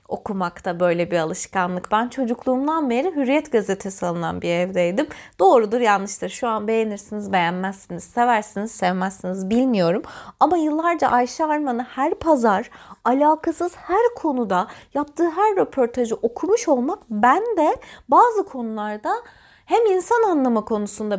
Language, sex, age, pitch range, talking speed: Turkish, female, 30-49, 215-350 Hz, 120 wpm